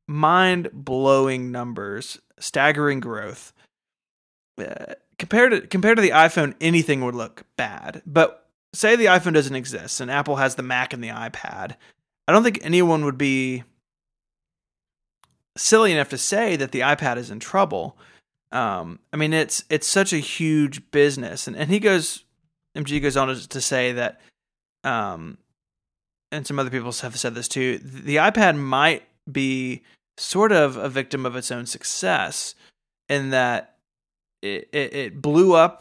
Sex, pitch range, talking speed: male, 130-160 Hz, 155 wpm